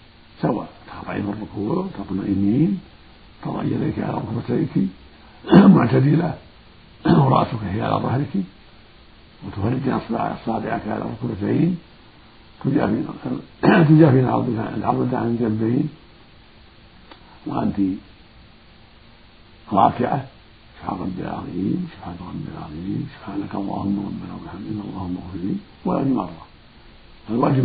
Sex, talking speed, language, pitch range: male, 95 wpm, Arabic, 100-115 Hz